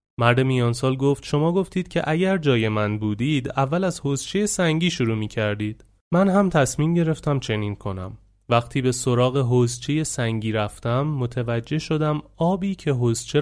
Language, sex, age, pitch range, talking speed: Persian, male, 30-49, 110-145 Hz, 150 wpm